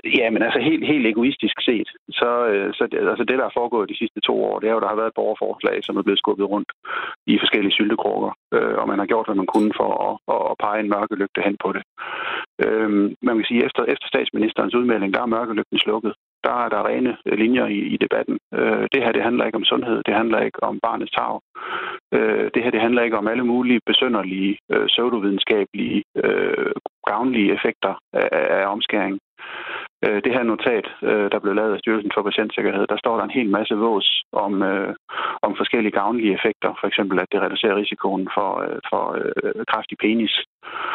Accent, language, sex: native, Danish, male